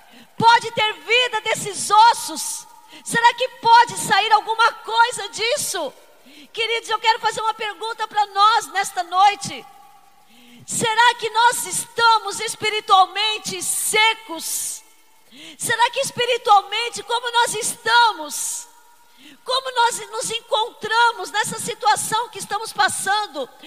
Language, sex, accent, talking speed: Portuguese, female, Brazilian, 110 wpm